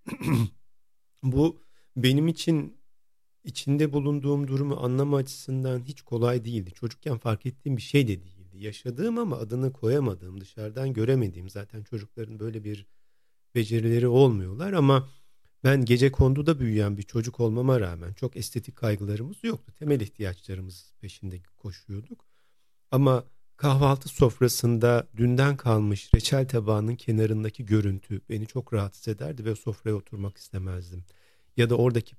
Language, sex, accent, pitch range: Turkish, male, native, 105-135 Hz